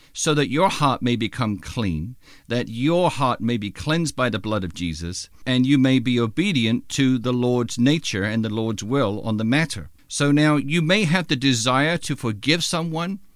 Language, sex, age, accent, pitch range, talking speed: English, male, 50-69, American, 115-150 Hz, 200 wpm